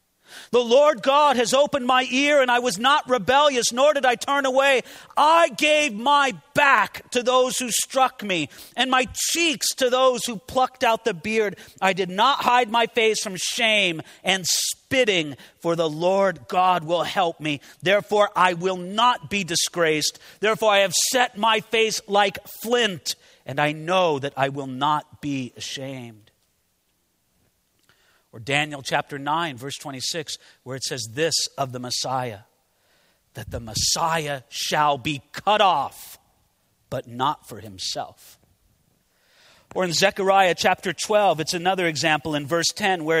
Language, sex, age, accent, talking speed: English, male, 40-59, American, 155 wpm